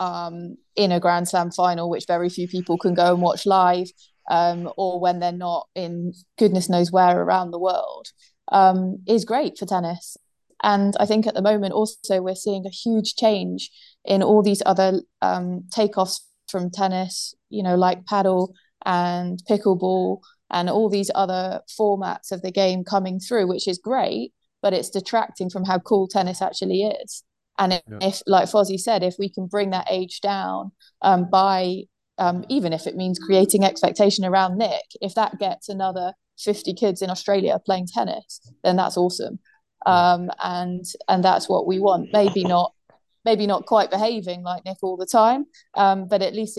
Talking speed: 180 wpm